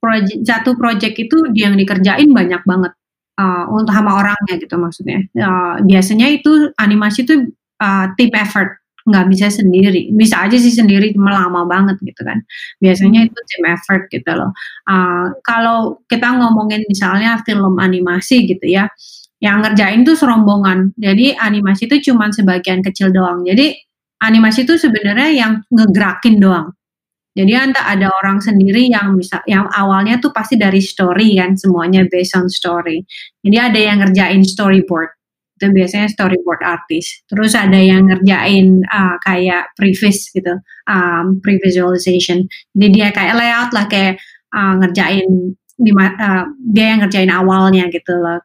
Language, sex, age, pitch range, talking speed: Indonesian, female, 30-49, 185-220 Hz, 150 wpm